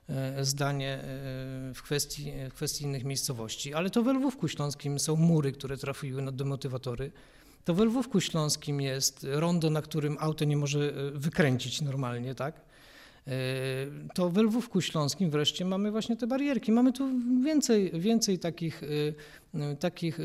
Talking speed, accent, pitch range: 135 wpm, native, 145-195 Hz